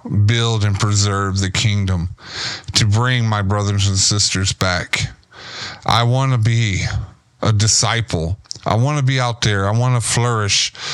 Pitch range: 95-115 Hz